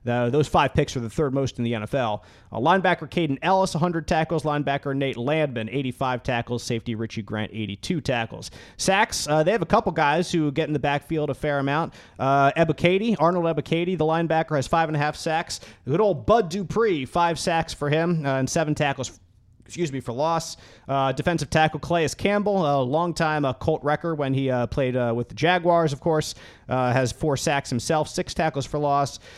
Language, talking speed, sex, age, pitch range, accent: English, 205 wpm, male, 30-49, 125-160 Hz, American